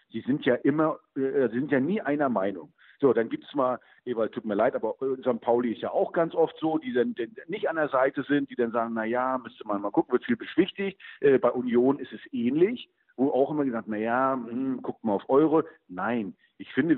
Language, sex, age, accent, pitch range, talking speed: German, male, 50-69, German, 115-160 Hz, 235 wpm